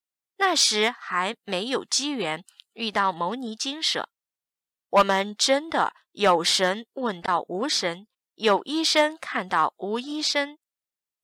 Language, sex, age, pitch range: Chinese, female, 20-39, 195-295 Hz